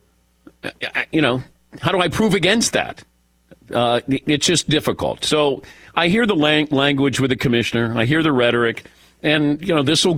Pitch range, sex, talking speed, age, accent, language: 115-180 Hz, male, 170 wpm, 50-69, American, English